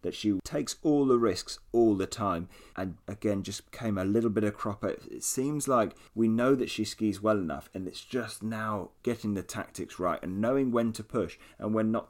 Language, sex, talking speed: English, male, 220 wpm